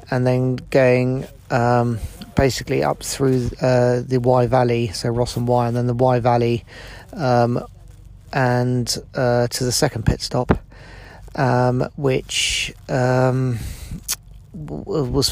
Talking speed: 130 wpm